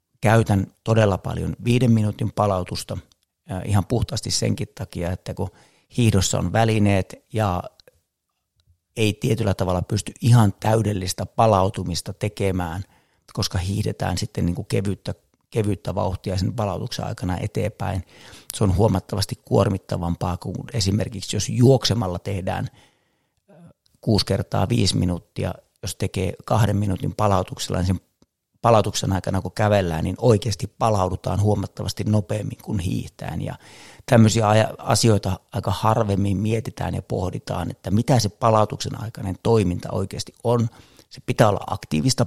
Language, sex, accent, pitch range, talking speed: Finnish, male, native, 95-115 Hz, 120 wpm